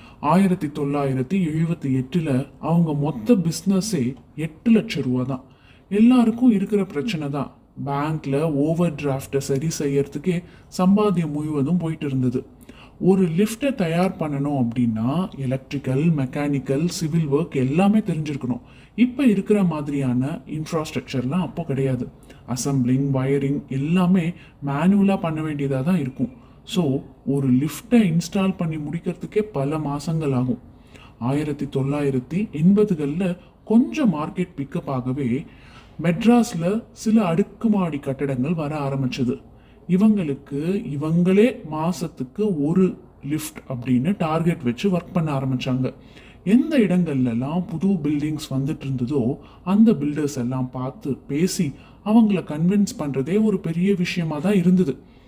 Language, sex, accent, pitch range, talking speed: Tamil, male, native, 135-185 Hz, 105 wpm